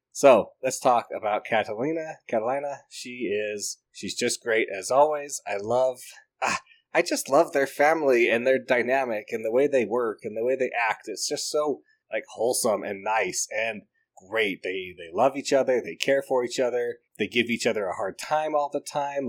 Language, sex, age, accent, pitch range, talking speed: English, male, 20-39, American, 115-155 Hz, 195 wpm